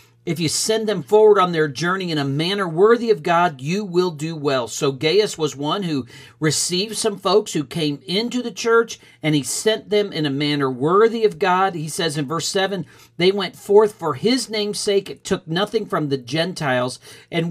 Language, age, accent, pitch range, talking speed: English, 50-69, American, 140-195 Hz, 205 wpm